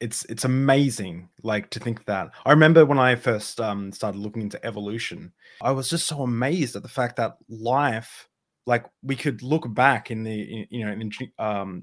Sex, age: male, 20-39